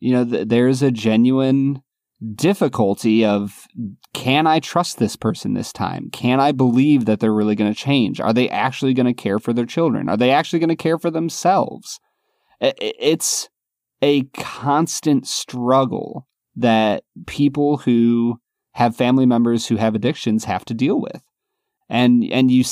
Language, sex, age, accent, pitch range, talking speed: English, male, 30-49, American, 115-150 Hz, 160 wpm